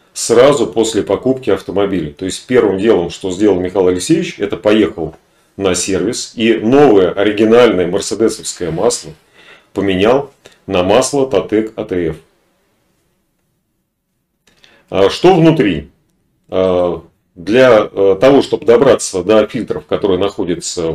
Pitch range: 95-150 Hz